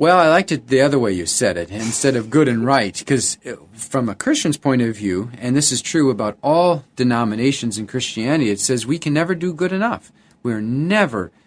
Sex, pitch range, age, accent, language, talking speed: male, 115-155 Hz, 40-59, American, English, 215 wpm